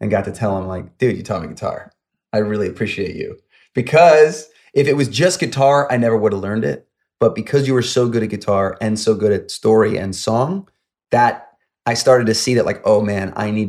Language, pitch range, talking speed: English, 100-120 Hz, 230 wpm